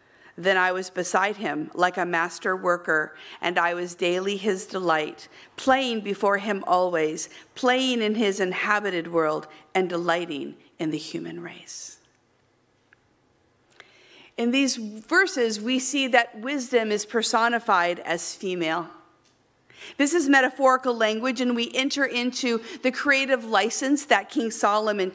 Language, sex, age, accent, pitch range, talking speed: English, female, 50-69, American, 200-290 Hz, 130 wpm